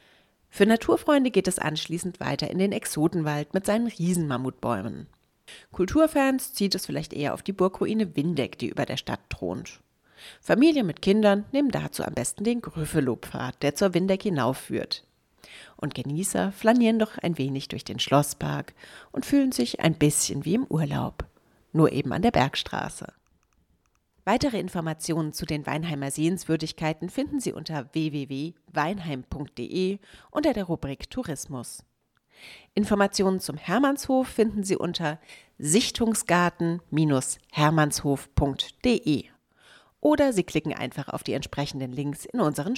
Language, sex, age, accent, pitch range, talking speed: German, female, 40-59, German, 145-205 Hz, 130 wpm